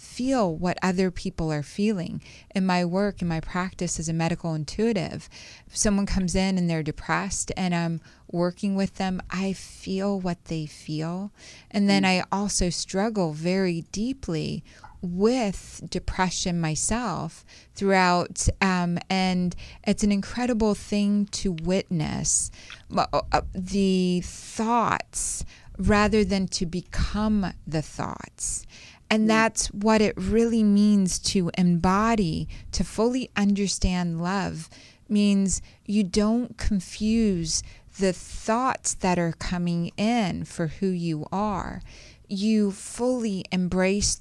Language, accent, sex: English, American, female